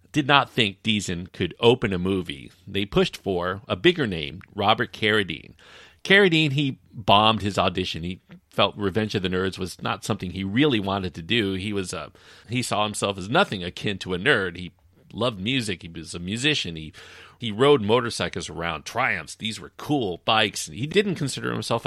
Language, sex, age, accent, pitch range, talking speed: English, male, 40-59, American, 90-120 Hz, 185 wpm